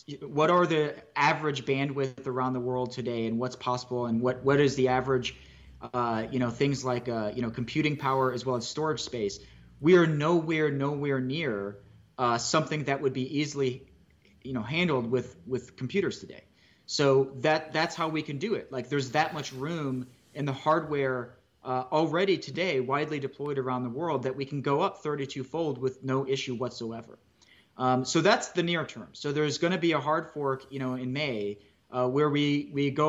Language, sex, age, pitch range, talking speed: English, male, 30-49, 125-150 Hz, 200 wpm